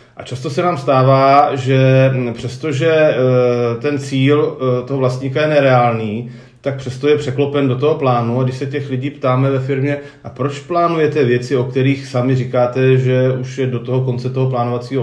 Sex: male